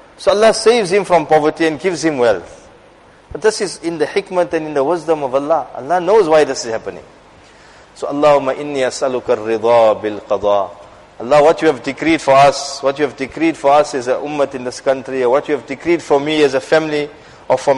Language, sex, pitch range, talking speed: English, male, 130-165 Hz, 215 wpm